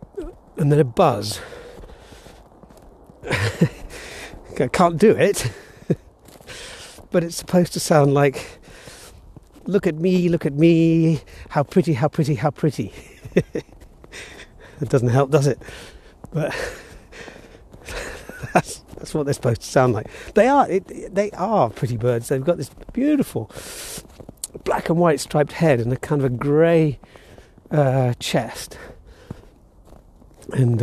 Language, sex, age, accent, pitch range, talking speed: English, male, 50-69, British, 130-180 Hz, 125 wpm